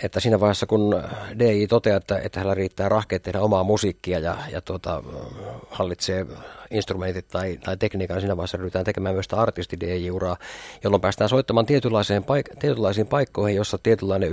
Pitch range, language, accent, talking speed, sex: 95-110 Hz, Finnish, native, 165 wpm, male